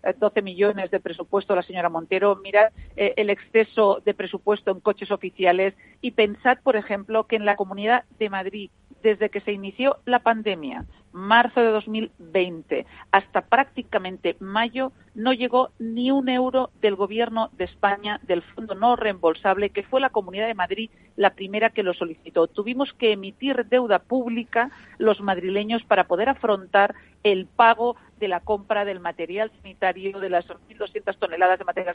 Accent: Spanish